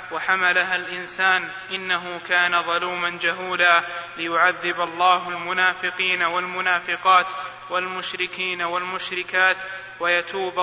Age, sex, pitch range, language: 20-39, male, 180-190 Hz, Arabic